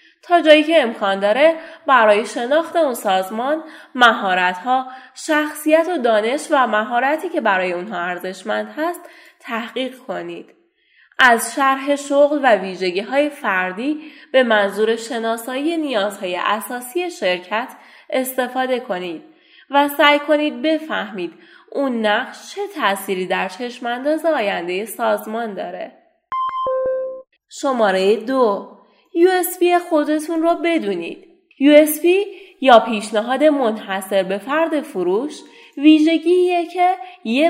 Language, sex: Persian, female